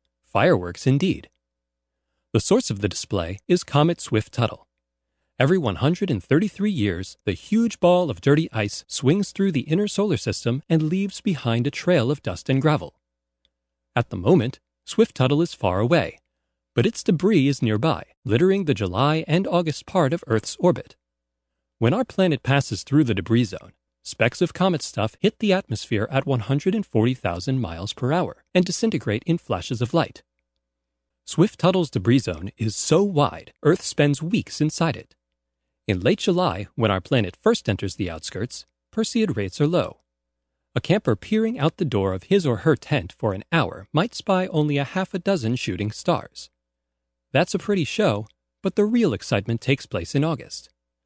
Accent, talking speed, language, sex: American, 165 wpm, English, male